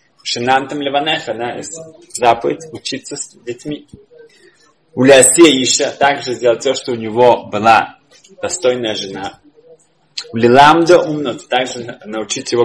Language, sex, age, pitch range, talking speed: Russian, male, 20-39, 125-190 Hz, 110 wpm